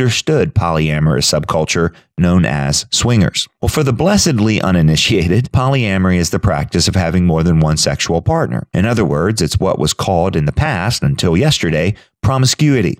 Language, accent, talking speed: English, American, 160 wpm